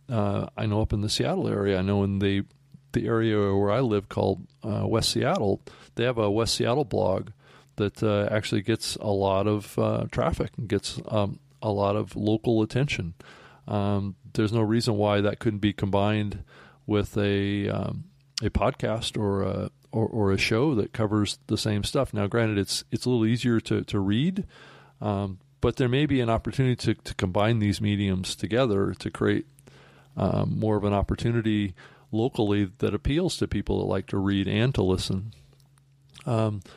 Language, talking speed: English, 185 wpm